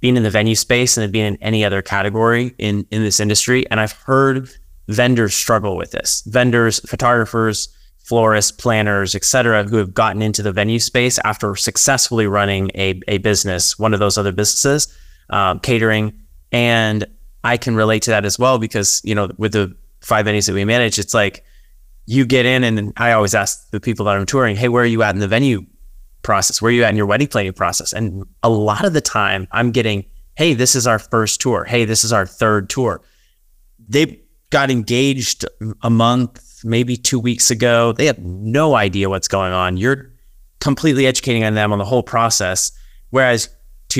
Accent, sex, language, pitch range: American, male, English, 100-120 Hz